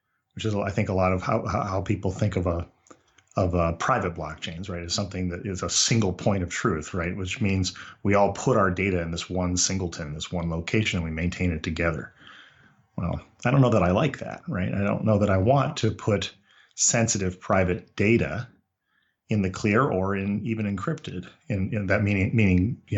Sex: male